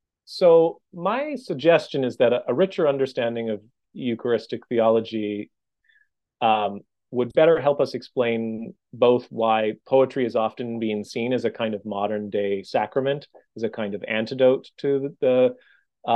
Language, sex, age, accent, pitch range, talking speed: English, male, 30-49, American, 110-140 Hz, 150 wpm